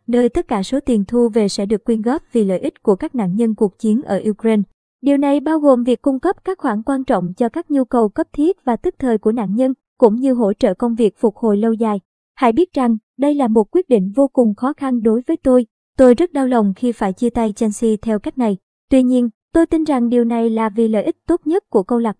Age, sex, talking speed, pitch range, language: 20-39, male, 265 wpm, 220-260 Hz, Vietnamese